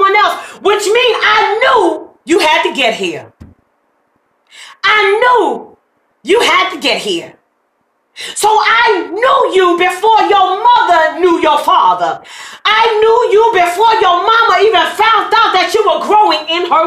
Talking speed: 145 wpm